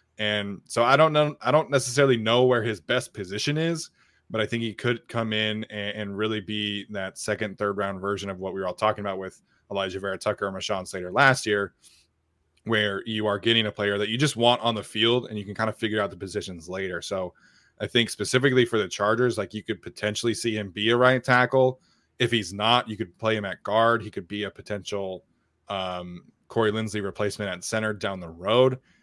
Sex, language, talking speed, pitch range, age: male, English, 225 wpm, 100-115 Hz, 20-39